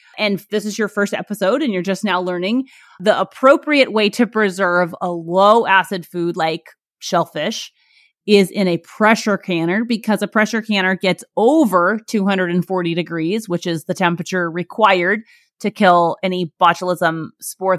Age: 30-49